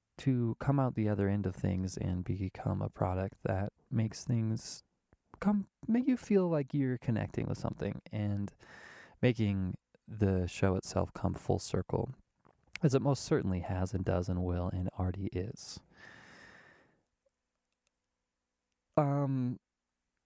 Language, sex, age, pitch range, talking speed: English, male, 20-39, 95-140 Hz, 135 wpm